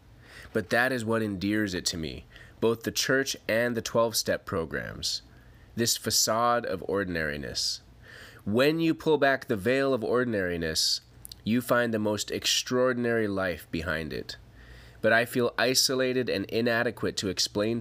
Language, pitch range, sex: English, 100-120 Hz, male